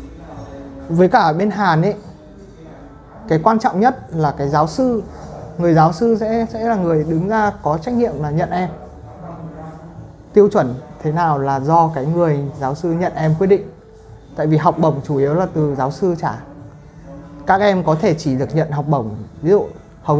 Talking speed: 195 wpm